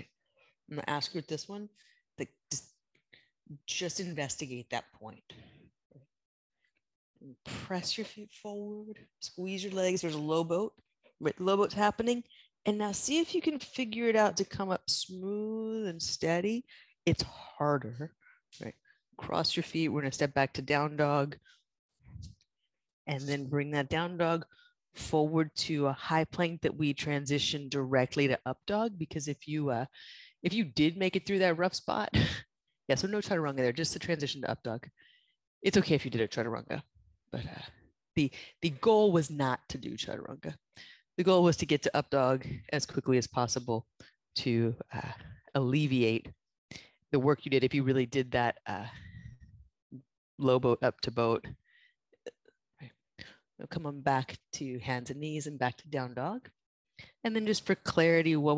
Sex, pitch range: female, 135-195 Hz